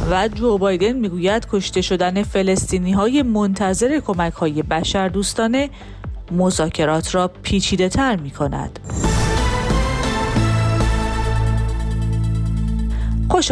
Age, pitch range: 30-49, 170-220 Hz